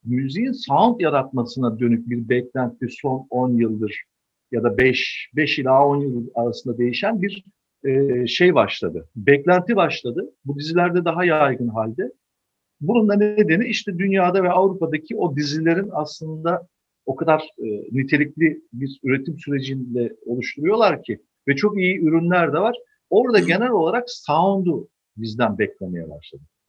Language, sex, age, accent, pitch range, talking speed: Turkish, male, 50-69, native, 120-180 Hz, 135 wpm